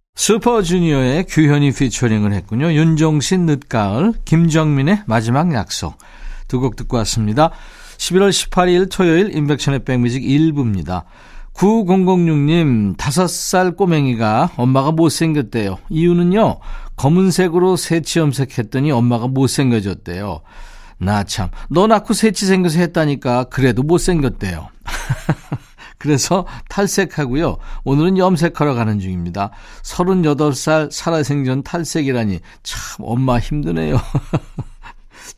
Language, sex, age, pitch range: Korean, male, 50-69, 125-170 Hz